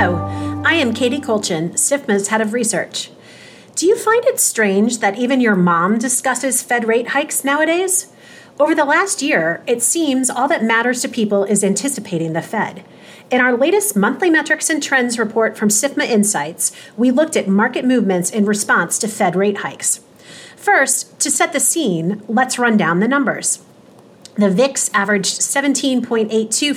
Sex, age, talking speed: female, 30-49, 165 wpm